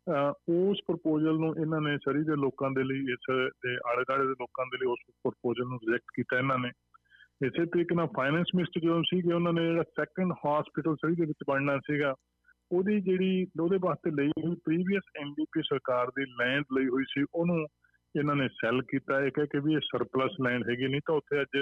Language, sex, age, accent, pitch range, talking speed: English, male, 20-39, Indian, 130-160 Hz, 90 wpm